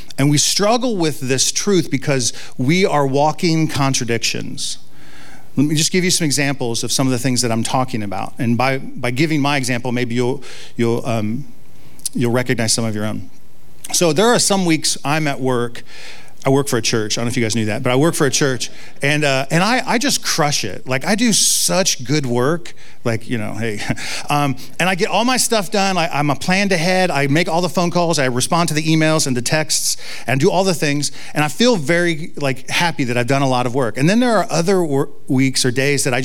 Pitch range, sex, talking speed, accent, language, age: 130-175 Hz, male, 240 wpm, American, English, 40-59